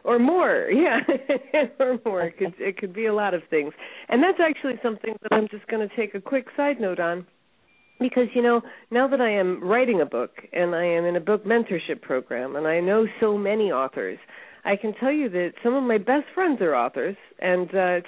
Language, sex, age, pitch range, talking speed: English, female, 40-59, 185-260 Hz, 220 wpm